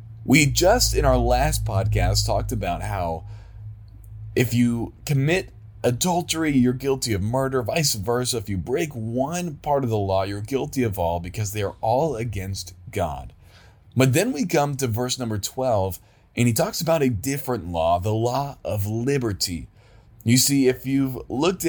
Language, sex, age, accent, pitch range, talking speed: English, male, 30-49, American, 105-135 Hz, 170 wpm